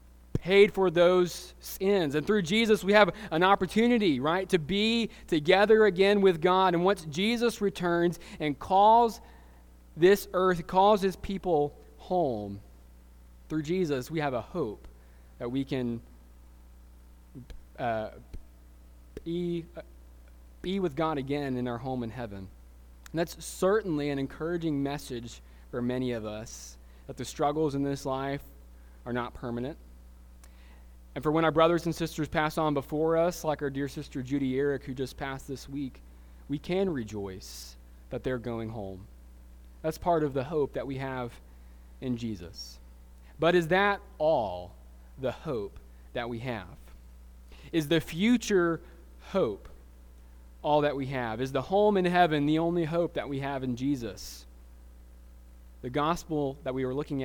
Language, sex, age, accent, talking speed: English, male, 20-39, American, 150 wpm